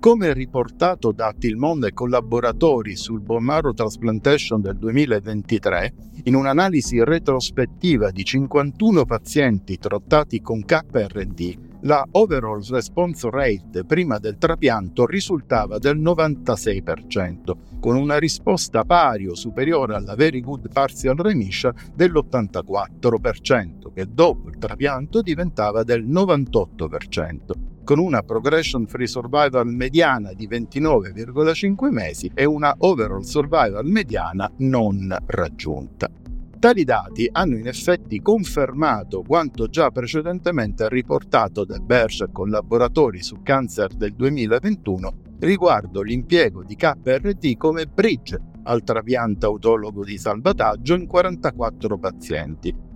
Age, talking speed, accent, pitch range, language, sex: 50-69, 110 wpm, native, 105-150 Hz, Italian, male